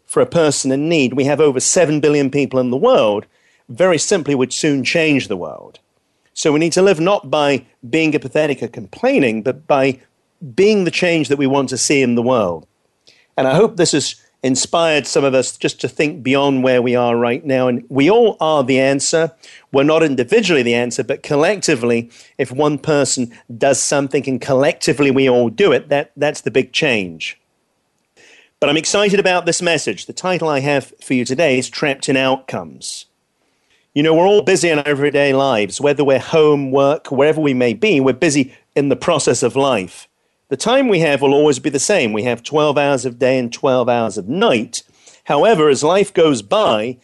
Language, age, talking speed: English, 40-59, 200 wpm